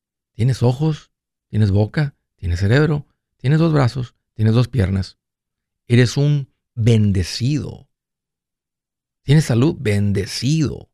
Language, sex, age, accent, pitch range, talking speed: Spanish, male, 50-69, Mexican, 110-145 Hz, 100 wpm